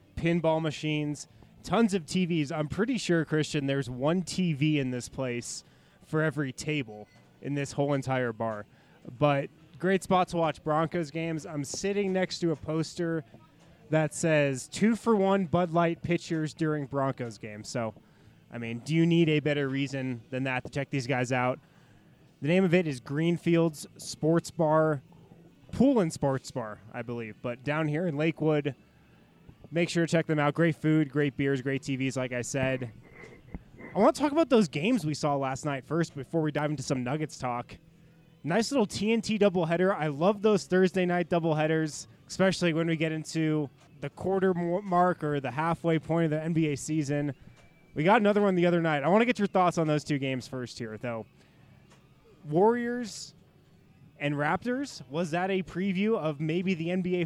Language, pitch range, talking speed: English, 140-175 Hz, 180 wpm